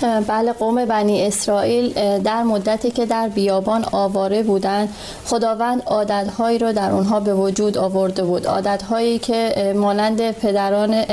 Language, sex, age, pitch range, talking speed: Persian, female, 30-49, 205-230 Hz, 130 wpm